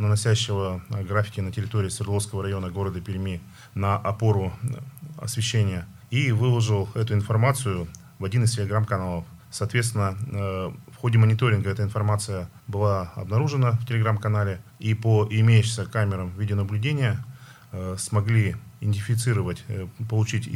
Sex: male